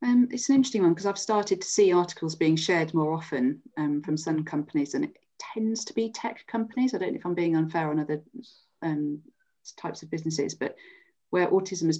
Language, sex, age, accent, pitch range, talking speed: English, female, 30-49, British, 150-170 Hz, 215 wpm